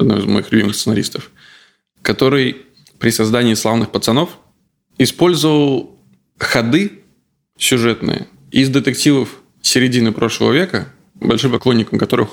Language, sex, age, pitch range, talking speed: Russian, male, 20-39, 105-125 Hz, 100 wpm